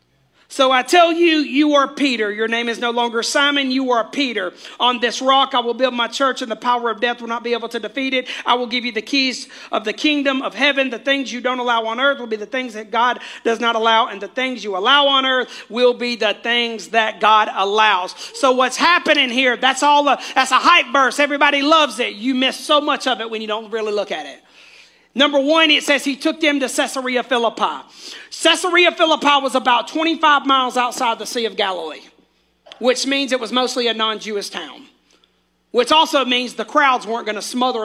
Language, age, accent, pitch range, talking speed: English, 40-59, American, 220-275 Hz, 225 wpm